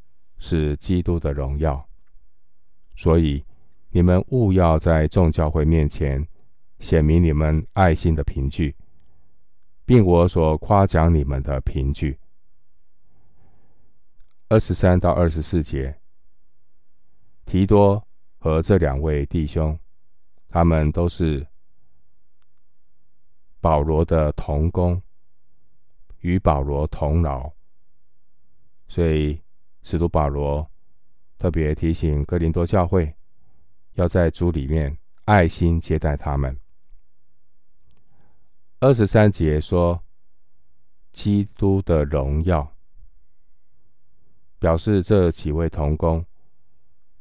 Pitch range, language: 75-90 Hz, Chinese